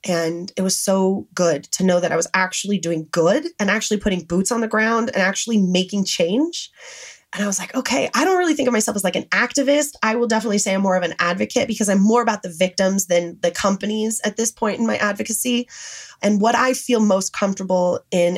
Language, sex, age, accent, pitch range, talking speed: English, female, 20-39, American, 180-230 Hz, 230 wpm